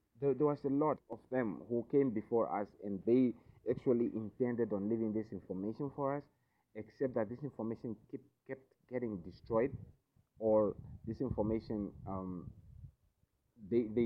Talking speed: 140 wpm